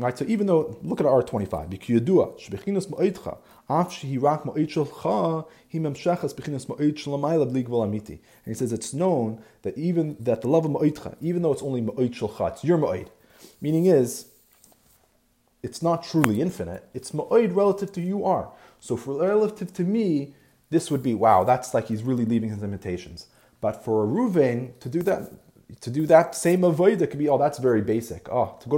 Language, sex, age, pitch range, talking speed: English, male, 30-49, 115-165 Hz, 160 wpm